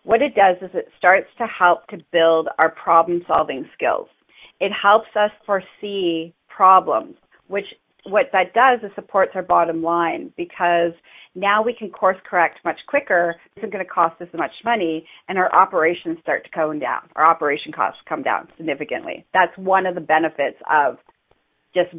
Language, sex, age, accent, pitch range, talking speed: English, female, 40-59, American, 165-215 Hz, 170 wpm